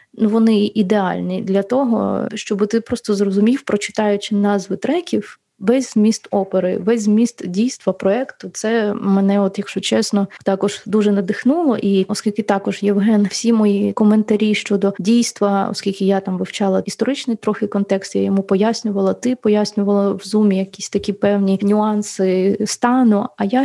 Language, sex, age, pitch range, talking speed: Ukrainian, female, 20-39, 200-230 Hz, 140 wpm